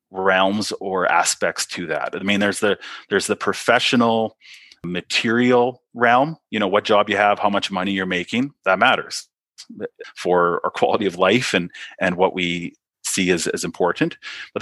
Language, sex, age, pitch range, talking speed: English, male, 30-49, 95-115 Hz, 170 wpm